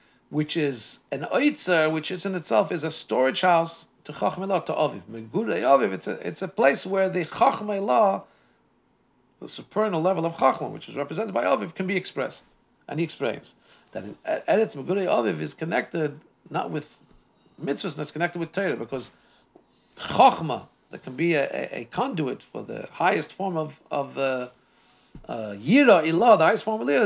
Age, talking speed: 50-69, 160 wpm